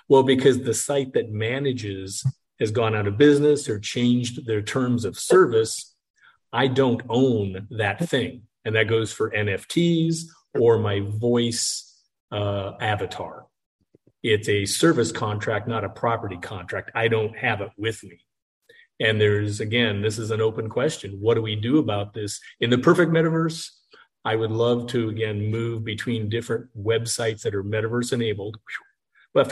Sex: male